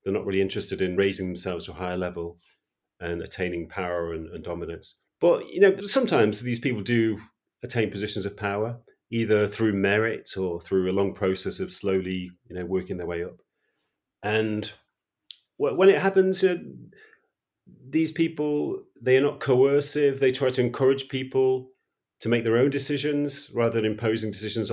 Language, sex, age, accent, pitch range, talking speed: English, male, 40-59, British, 95-130 Hz, 165 wpm